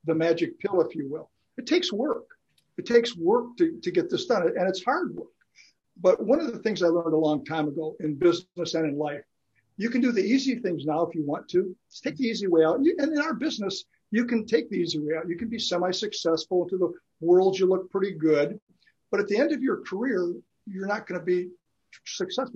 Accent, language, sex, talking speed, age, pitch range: American, English, male, 230 wpm, 60-79, 160-230 Hz